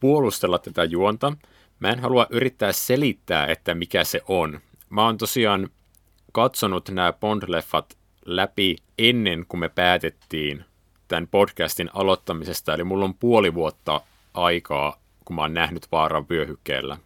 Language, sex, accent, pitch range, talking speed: Finnish, male, native, 85-105 Hz, 135 wpm